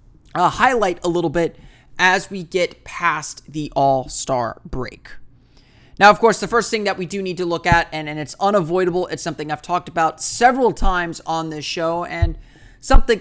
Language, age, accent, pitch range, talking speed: English, 30-49, American, 155-190 Hz, 180 wpm